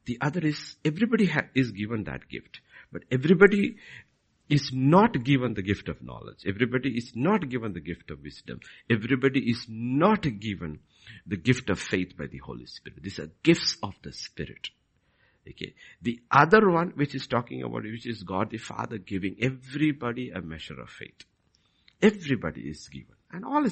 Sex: male